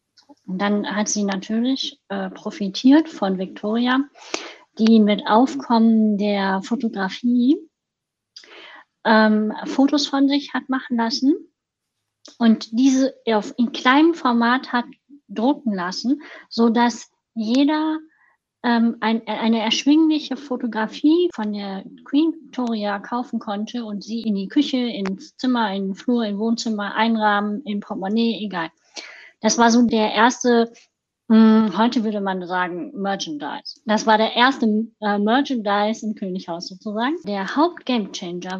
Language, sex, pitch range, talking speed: German, female, 210-270 Hz, 125 wpm